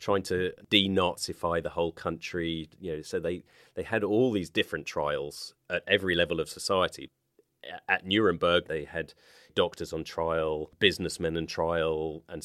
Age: 30-49